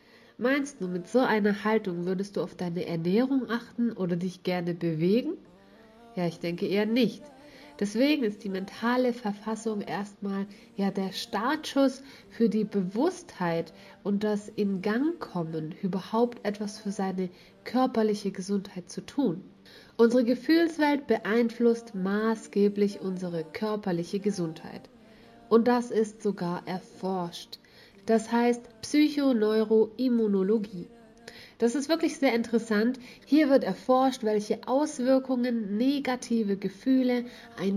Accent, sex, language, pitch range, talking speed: German, female, German, 195-240 Hz, 120 wpm